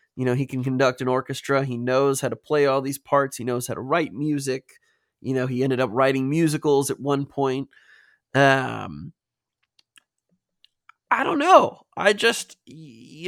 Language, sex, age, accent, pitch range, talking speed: English, male, 20-39, American, 130-170 Hz, 170 wpm